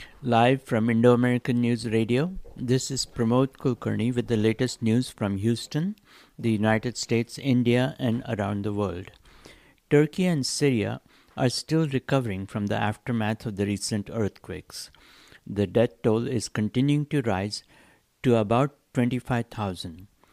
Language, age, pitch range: English, 60-79, 110-130 Hz